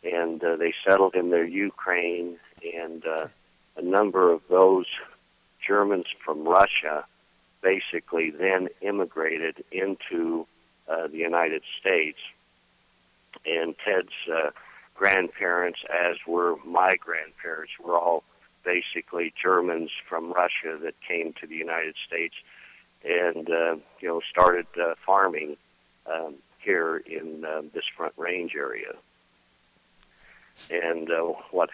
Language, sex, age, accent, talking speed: English, male, 50-69, American, 115 wpm